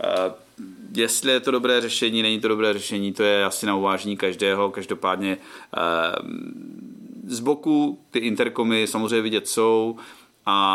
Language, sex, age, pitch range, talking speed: Czech, male, 40-59, 105-145 Hz, 135 wpm